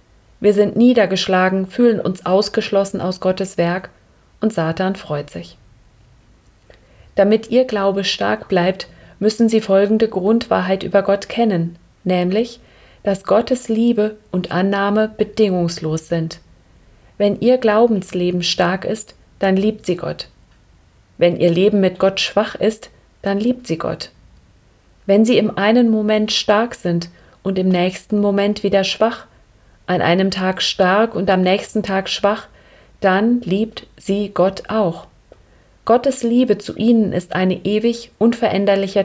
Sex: female